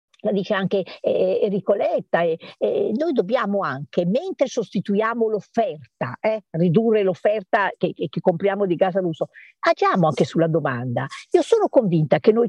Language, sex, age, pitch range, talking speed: Italian, female, 50-69, 165-215 Hz, 160 wpm